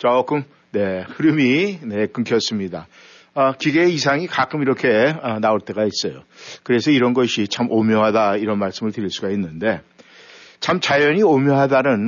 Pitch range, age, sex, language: 110-150 Hz, 60-79, male, Korean